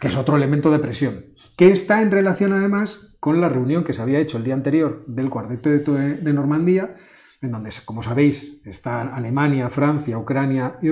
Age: 30-49